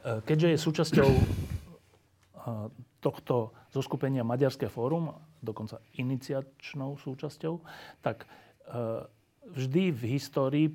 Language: Slovak